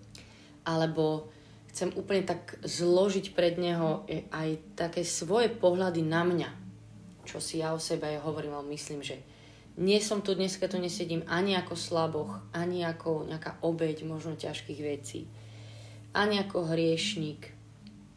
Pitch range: 110-175 Hz